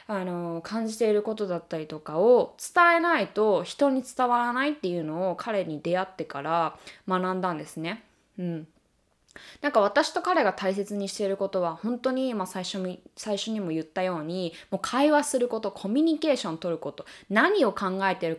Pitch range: 180-285 Hz